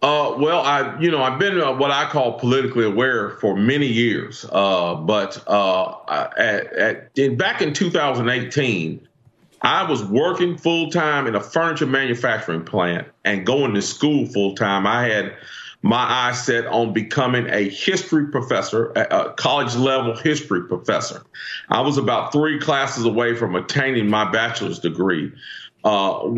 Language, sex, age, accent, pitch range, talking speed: English, male, 40-59, American, 115-145 Hz, 155 wpm